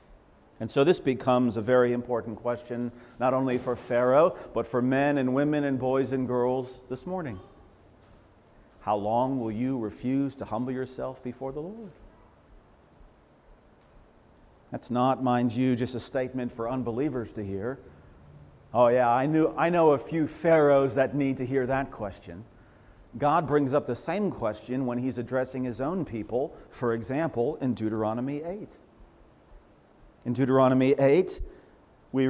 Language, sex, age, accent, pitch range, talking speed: English, male, 50-69, American, 120-200 Hz, 150 wpm